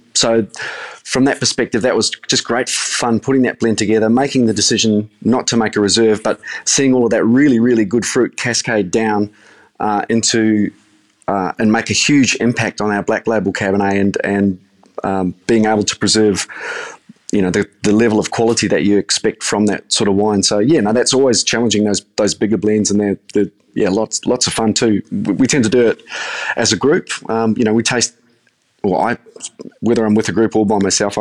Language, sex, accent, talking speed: English, male, Australian, 210 wpm